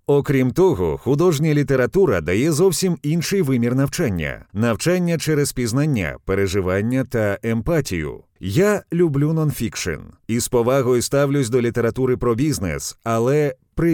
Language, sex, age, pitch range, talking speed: Ukrainian, male, 30-49, 115-165 Hz, 115 wpm